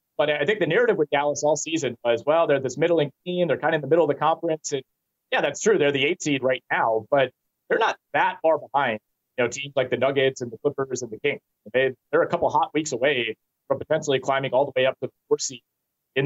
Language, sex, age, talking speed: English, male, 30-49, 260 wpm